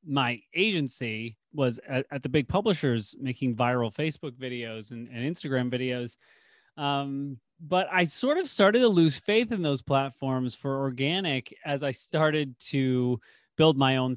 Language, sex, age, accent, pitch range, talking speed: English, male, 30-49, American, 130-165 Hz, 155 wpm